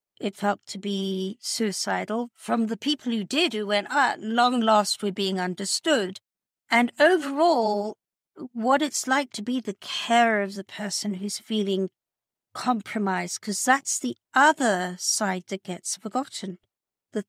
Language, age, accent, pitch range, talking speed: English, 50-69, British, 200-235 Hz, 145 wpm